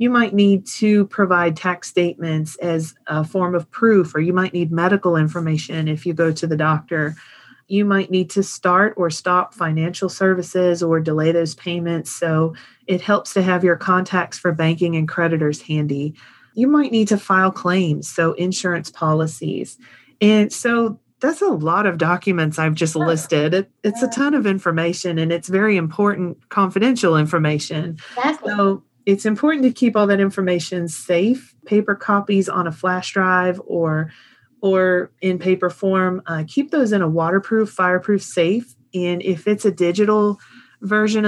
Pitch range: 165-200 Hz